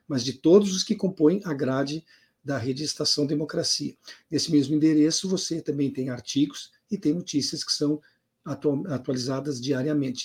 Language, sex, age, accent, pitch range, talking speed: Portuguese, male, 50-69, Brazilian, 145-180 Hz, 150 wpm